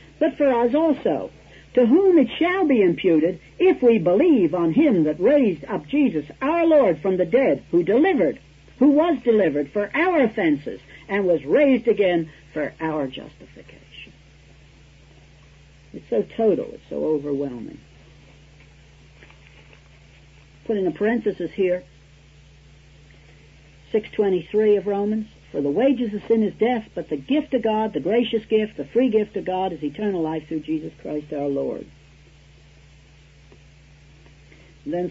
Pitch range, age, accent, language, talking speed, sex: 145-240 Hz, 60-79, American, English, 140 wpm, female